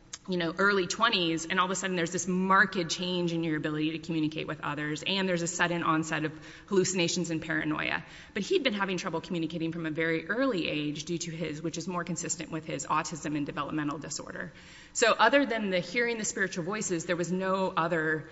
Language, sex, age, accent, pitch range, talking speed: English, female, 20-39, American, 160-190 Hz, 215 wpm